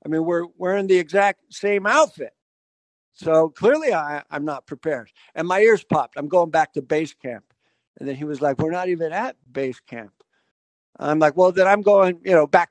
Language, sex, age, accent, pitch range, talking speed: English, male, 60-79, American, 150-200 Hz, 210 wpm